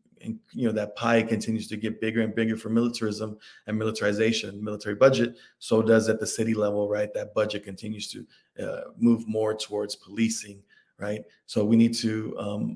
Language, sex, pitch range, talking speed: English, male, 110-115 Hz, 185 wpm